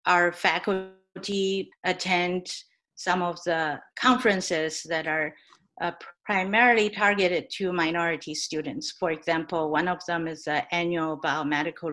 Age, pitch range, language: 50-69, 155-185 Hz, English